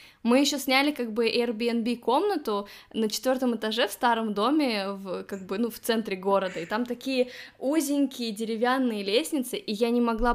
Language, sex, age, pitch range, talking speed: Russian, female, 20-39, 205-250 Hz, 175 wpm